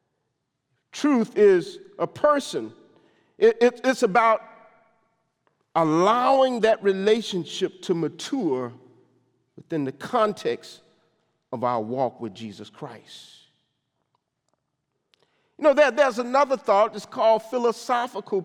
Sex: male